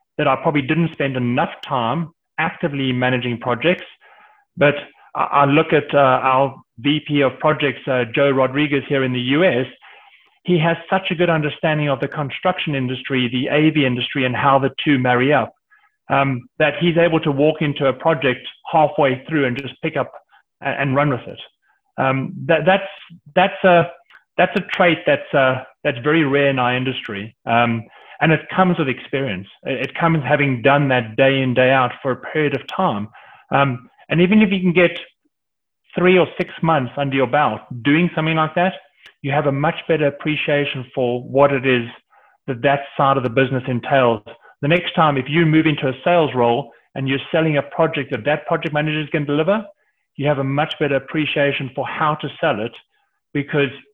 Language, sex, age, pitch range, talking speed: English, male, 30-49, 130-165 Hz, 190 wpm